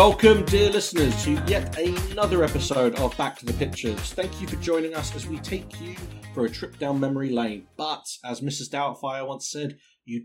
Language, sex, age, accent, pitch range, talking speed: English, male, 30-49, British, 115-155 Hz, 200 wpm